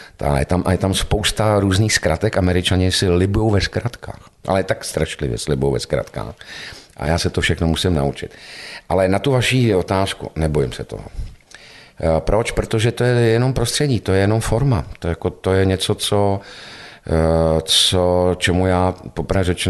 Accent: native